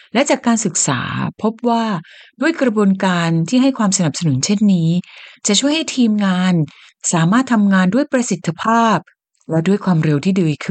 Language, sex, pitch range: Thai, female, 165-235 Hz